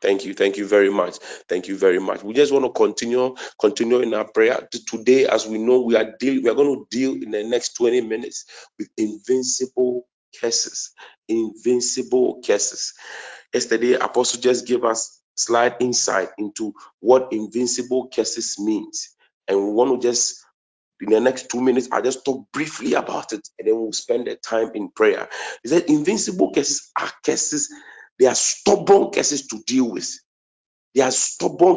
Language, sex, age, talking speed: English, male, 40-59, 180 wpm